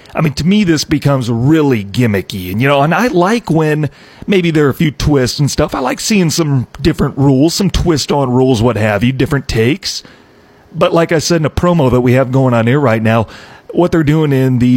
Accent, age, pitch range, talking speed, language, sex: American, 40-59, 125-160 Hz, 235 wpm, English, male